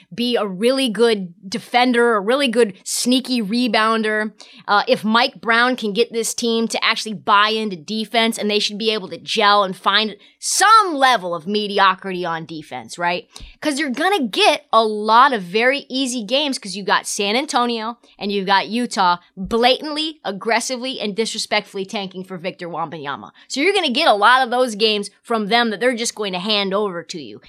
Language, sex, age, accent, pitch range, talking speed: English, female, 20-39, American, 205-255 Hz, 190 wpm